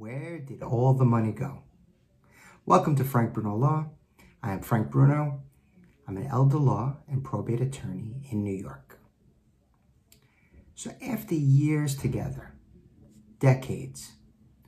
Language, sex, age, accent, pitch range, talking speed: English, male, 50-69, American, 100-135 Hz, 125 wpm